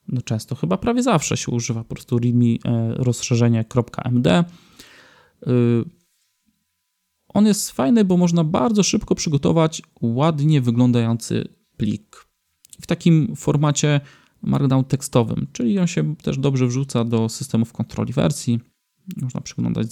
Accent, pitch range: native, 120-155 Hz